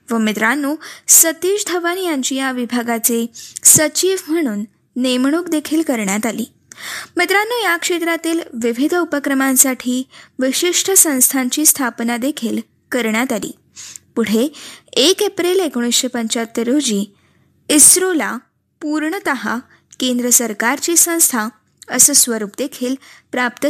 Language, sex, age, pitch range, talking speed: Marathi, female, 20-39, 250-330 Hz, 80 wpm